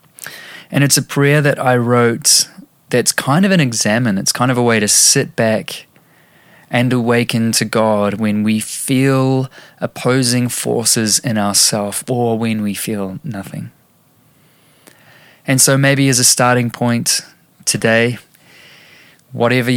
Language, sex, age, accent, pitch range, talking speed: English, male, 20-39, Australian, 110-130 Hz, 135 wpm